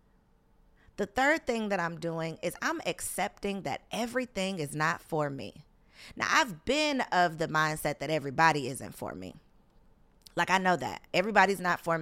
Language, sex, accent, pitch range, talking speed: English, female, American, 160-245 Hz, 165 wpm